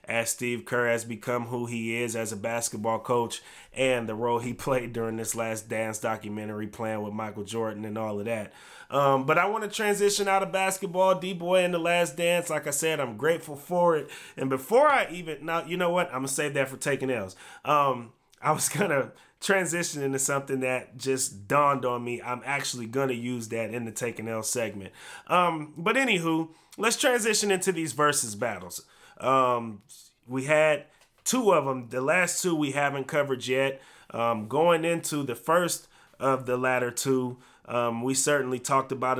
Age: 30-49